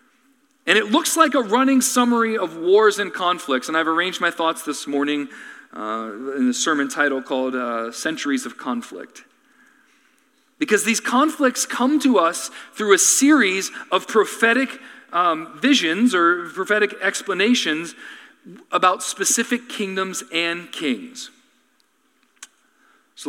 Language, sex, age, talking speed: English, male, 40-59, 130 wpm